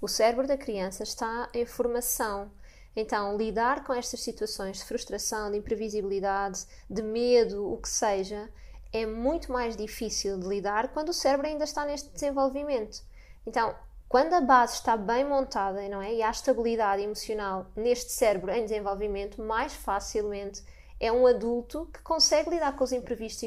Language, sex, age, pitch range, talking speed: Portuguese, female, 20-39, 220-300 Hz, 155 wpm